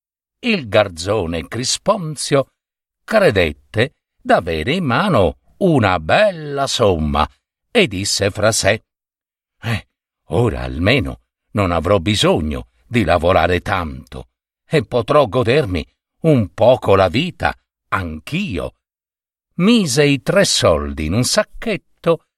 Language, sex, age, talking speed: Italian, male, 60-79, 100 wpm